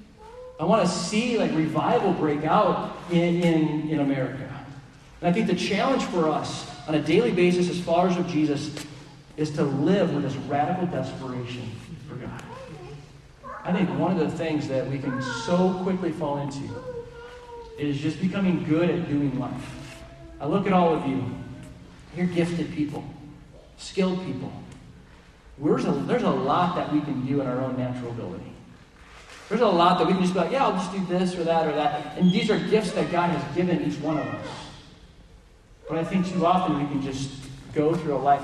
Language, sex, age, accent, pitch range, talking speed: English, male, 40-59, American, 140-180 Hz, 190 wpm